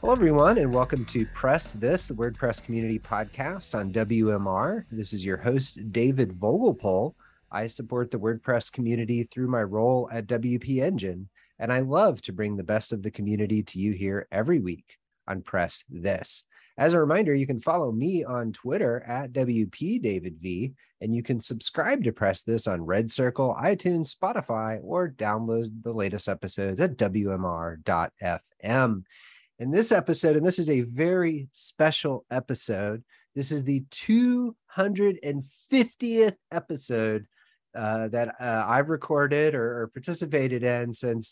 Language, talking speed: English, 155 wpm